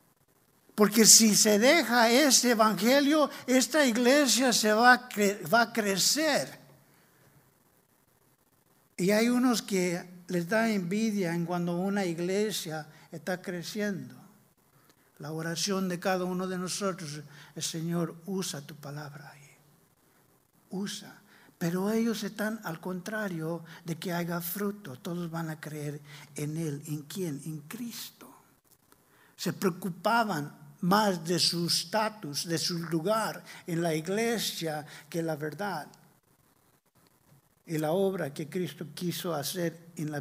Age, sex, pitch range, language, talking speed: 60-79, male, 150-200 Hz, English, 120 wpm